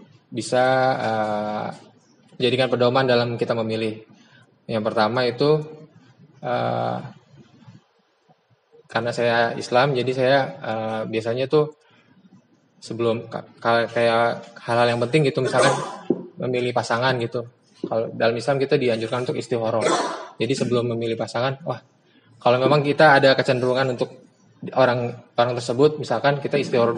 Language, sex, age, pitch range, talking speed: Indonesian, male, 20-39, 115-135 Hz, 120 wpm